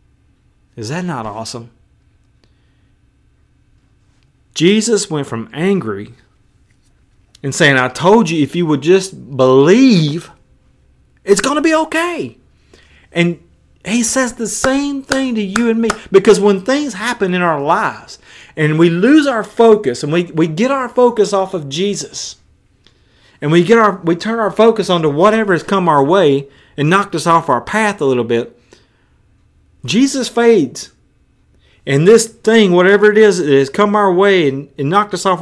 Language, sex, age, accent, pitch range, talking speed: English, male, 30-49, American, 130-205 Hz, 160 wpm